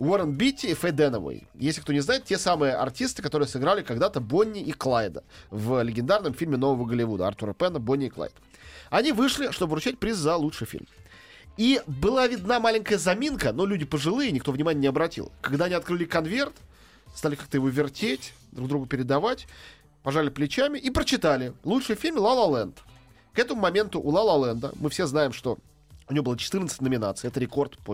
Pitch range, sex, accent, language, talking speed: 130-195 Hz, male, native, Russian, 180 wpm